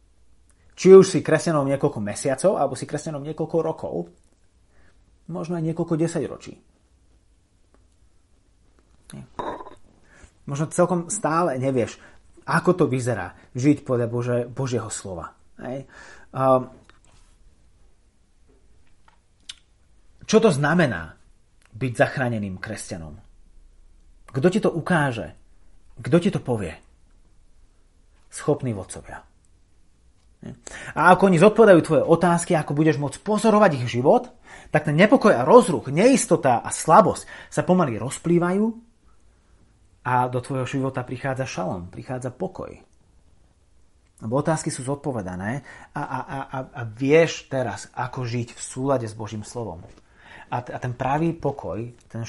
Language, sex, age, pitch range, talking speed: Slovak, male, 30-49, 90-150 Hz, 110 wpm